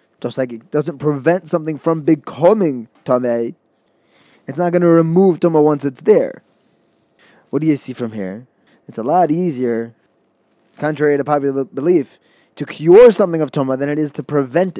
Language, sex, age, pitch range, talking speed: English, male, 20-39, 125-165 Hz, 170 wpm